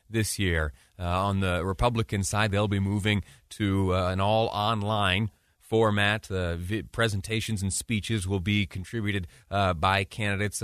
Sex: male